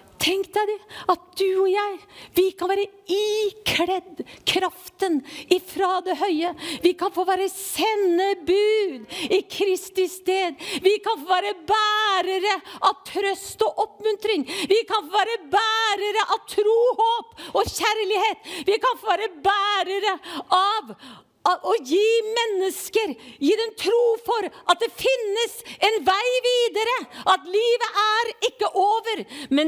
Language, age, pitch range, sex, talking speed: English, 50-69, 275-405 Hz, female, 130 wpm